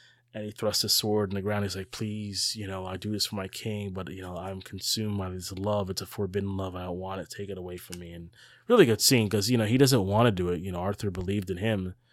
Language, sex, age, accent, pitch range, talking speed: English, male, 30-49, American, 95-120 Hz, 290 wpm